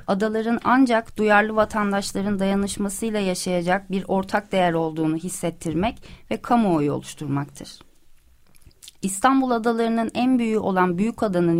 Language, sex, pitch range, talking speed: Turkish, female, 175-220 Hz, 105 wpm